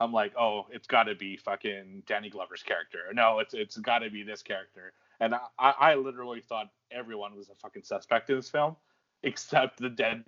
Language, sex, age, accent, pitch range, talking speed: English, male, 30-49, American, 100-125 Hz, 200 wpm